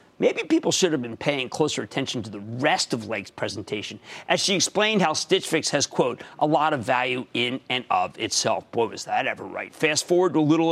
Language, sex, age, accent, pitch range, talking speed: English, male, 50-69, American, 135-210 Hz, 225 wpm